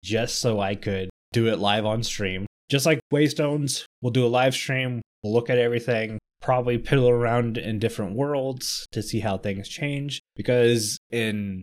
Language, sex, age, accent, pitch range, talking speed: English, male, 20-39, American, 100-125 Hz, 175 wpm